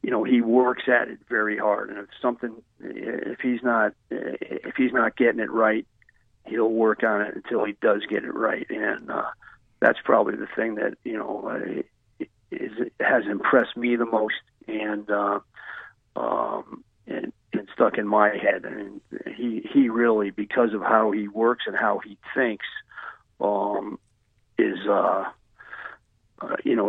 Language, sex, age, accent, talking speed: English, male, 50-69, American, 170 wpm